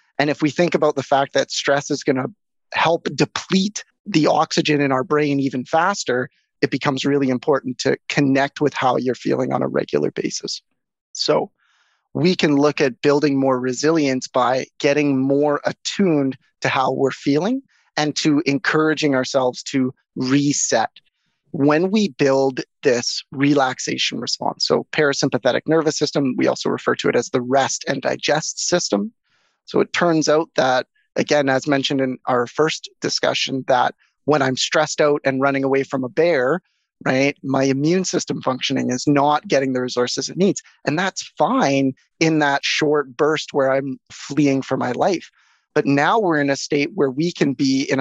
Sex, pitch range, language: male, 135-150 Hz, English